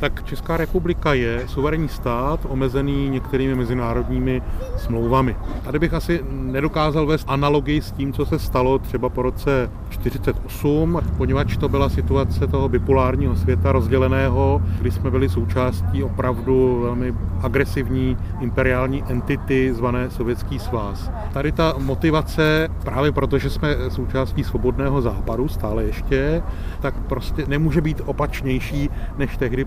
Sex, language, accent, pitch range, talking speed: male, Czech, native, 120-140 Hz, 125 wpm